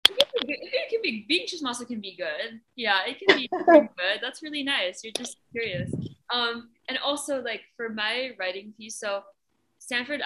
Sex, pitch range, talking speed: female, 205-255 Hz, 175 wpm